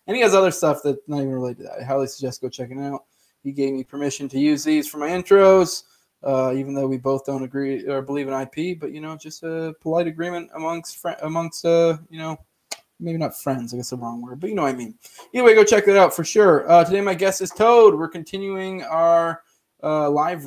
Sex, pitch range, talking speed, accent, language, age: male, 140-180 Hz, 245 wpm, American, English, 20-39